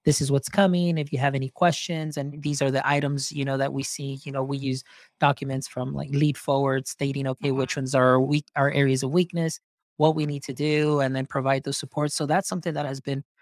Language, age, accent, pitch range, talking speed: English, 20-39, American, 135-155 Hz, 240 wpm